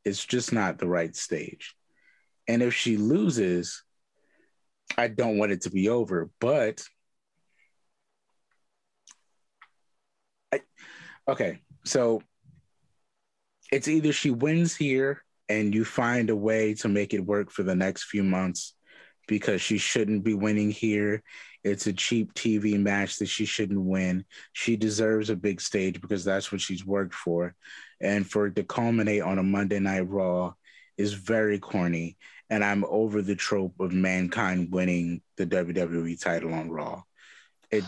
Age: 30-49